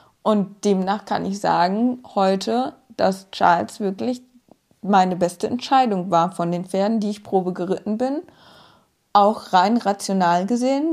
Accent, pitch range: German, 200-235 Hz